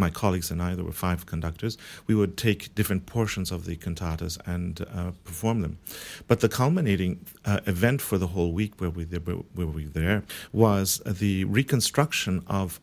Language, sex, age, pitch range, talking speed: English, male, 50-69, 90-110 Hz, 185 wpm